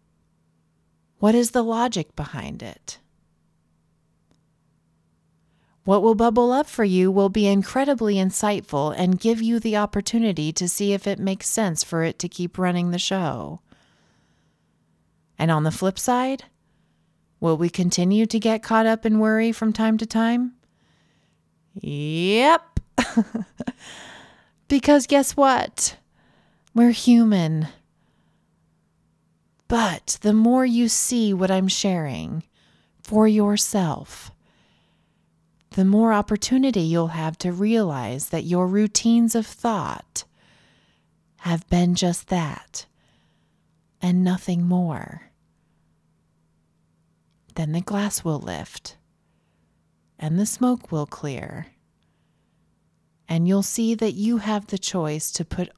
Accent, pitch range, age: American, 155-220 Hz, 30-49